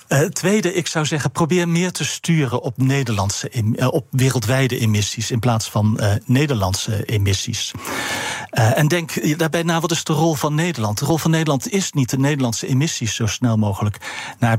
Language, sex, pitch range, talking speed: Dutch, male, 115-155 Hz, 185 wpm